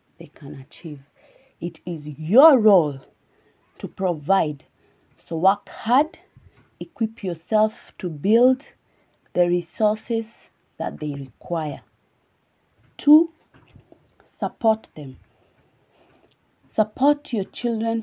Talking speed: 90 wpm